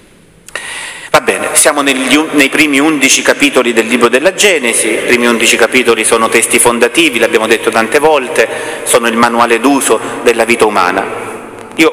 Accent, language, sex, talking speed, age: native, Italian, male, 155 wpm, 30-49